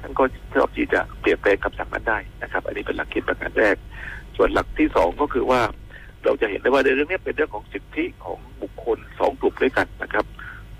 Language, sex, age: Thai, male, 60-79